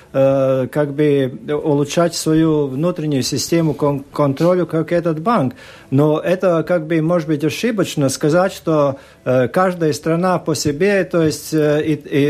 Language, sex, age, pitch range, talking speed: Russian, male, 50-69, 150-190 Hz, 130 wpm